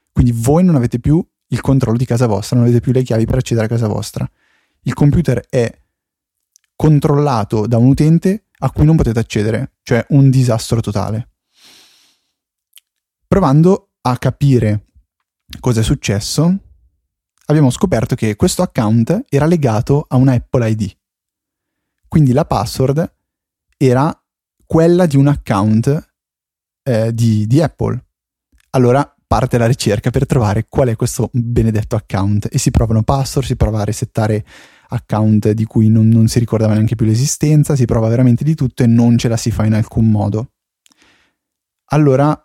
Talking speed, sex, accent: 155 wpm, male, native